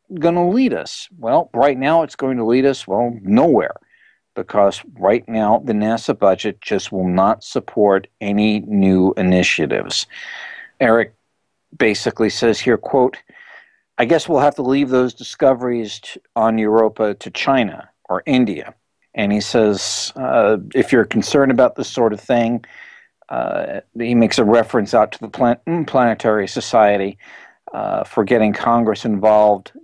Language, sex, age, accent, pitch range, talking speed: English, male, 60-79, American, 100-120 Hz, 145 wpm